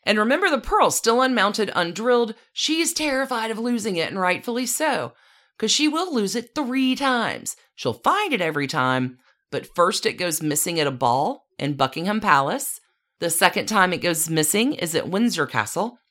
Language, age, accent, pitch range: English, 40-59, American, 140-230 Hz